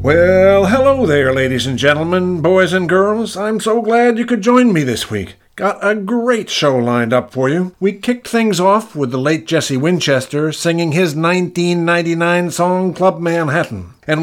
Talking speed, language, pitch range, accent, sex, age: 175 wpm, English, 140-195 Hz, American, male, 50-69